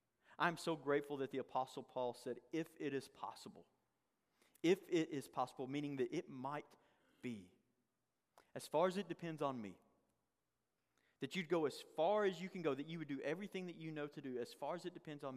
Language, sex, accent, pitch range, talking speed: English, male, American, 145-195 Hz, 205 wpm